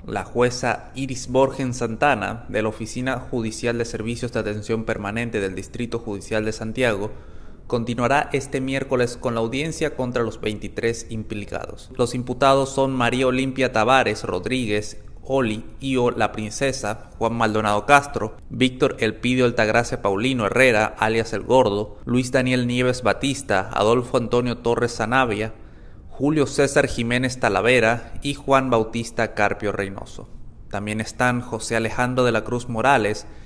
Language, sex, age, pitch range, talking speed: Spanish, male, 30-49, 110-130 Hz, 135 wpm